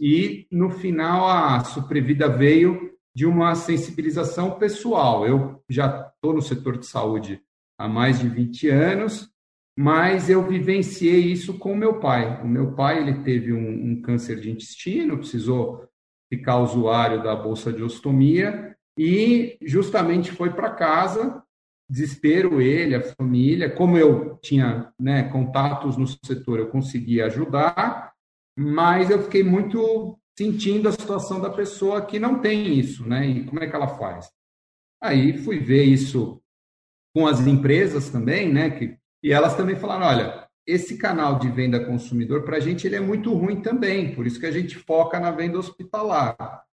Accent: Brazilian